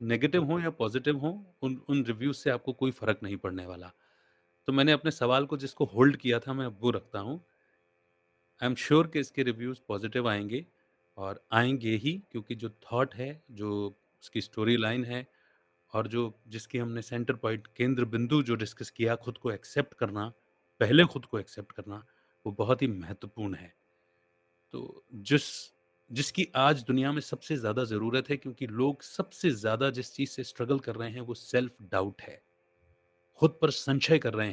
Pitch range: 105-135 Hz